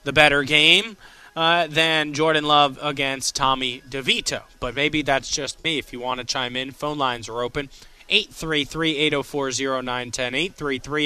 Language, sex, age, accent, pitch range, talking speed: English, male, 20-39, American, 130-160 Hz, 145 wpm